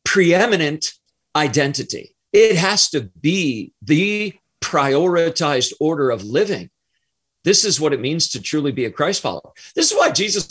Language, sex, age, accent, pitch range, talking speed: English, male, 40-59, American, 135-175 Hz, 150 wpm